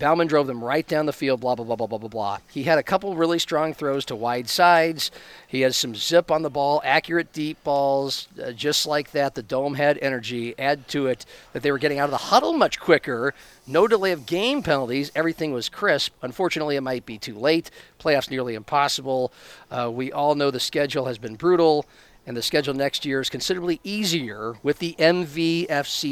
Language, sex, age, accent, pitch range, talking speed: English, male, 50-69, American, 135-170 Hz, 210 wpm